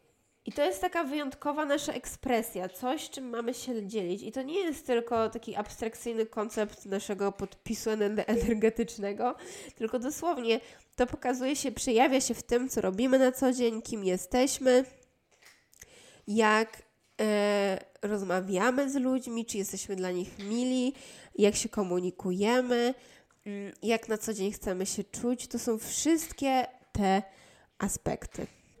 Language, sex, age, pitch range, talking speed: Polish, female, 20-39, 205-250 Hz, 130 wpm